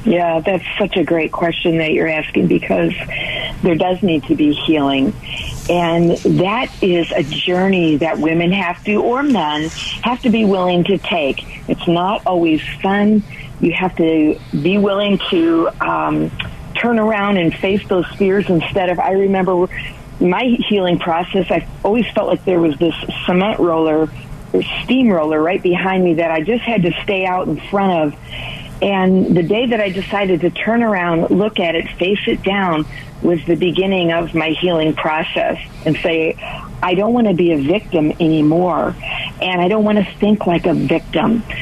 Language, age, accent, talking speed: English, 50-69, American, 175 wpm